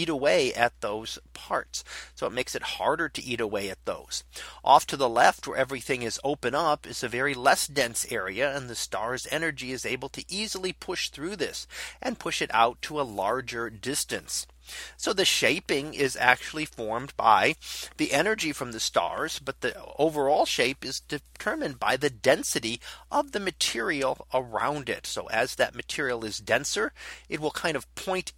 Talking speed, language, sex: 185 wpm, English, male